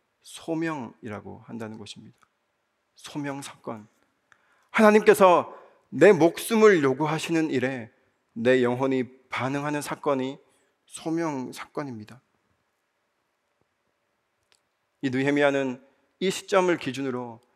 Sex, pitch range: male, 125-190 Hz